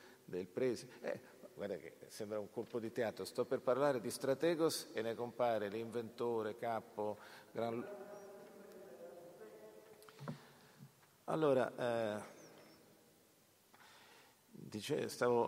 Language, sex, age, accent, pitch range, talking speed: Italian, male, 50-69, native, 95-120 Hz, 90 wpm